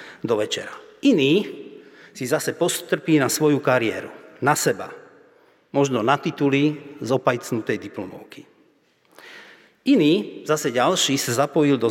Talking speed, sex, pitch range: 110 wpm, male, 125-165 Hz